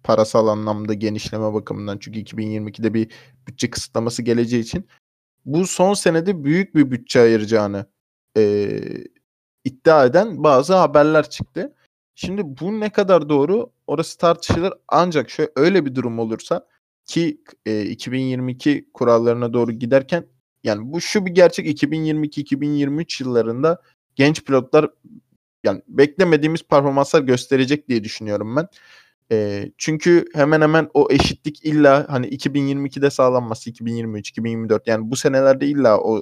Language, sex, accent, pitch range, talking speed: Turkish, male, native, 115-155 Hz, 125 wpm